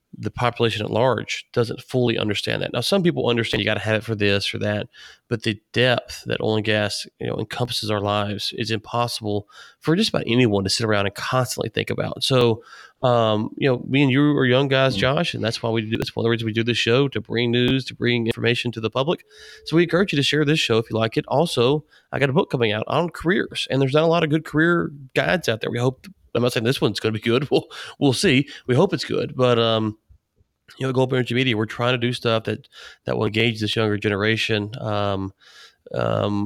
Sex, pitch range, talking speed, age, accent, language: male, 110-130 Hz, 250 wpm, 30-49, American, English